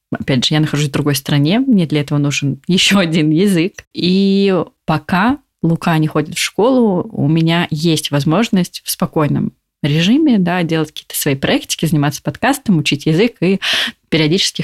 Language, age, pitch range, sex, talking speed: Russian, 20-39, 155-195 Hz, female, 155 wpm